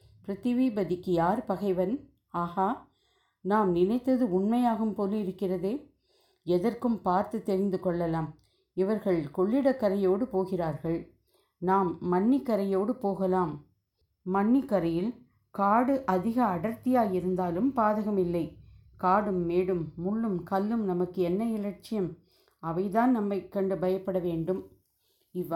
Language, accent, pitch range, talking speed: Tamil, native, 175-220 Hz, 60 wpm